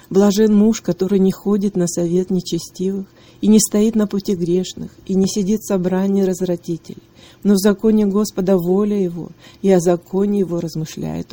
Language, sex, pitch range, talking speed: Russian, female, 175-200 Hz, 165 wpm